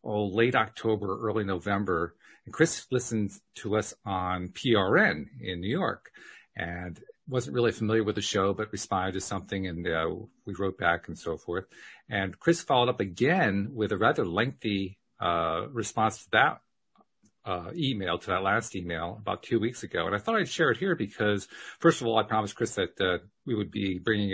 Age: 50-69